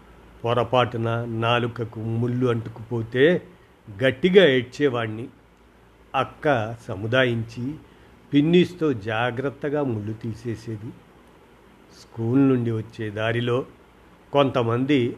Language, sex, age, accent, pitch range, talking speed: Telugu, male, 50-69, native, 110-135 Hz, 65 wpm